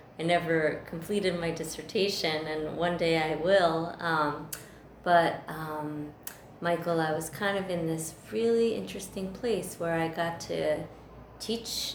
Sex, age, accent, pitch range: female, 30-49, American, 150-170 Hz